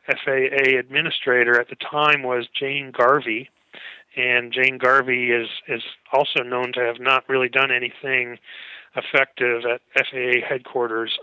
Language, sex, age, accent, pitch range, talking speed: English, male, 40-59, American, 130-160 Hz, 135 wpm